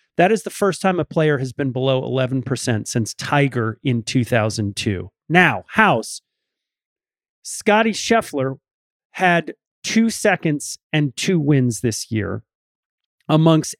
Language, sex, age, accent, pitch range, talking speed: English, male, 40-59, American, 125-185 Hz, 120 wpm